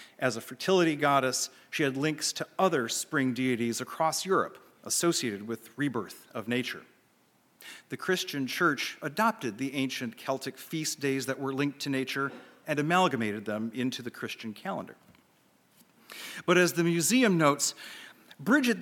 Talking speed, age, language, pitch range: 145 wpm, 40-59, English, 135-200 Hz